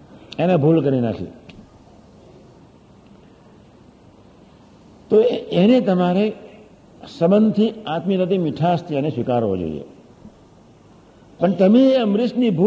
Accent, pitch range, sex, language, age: native, 140-210 Hz, male, Gujarati, 60-79